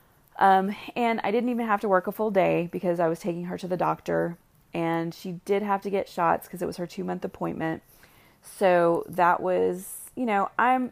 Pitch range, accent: 155-195 Hz, American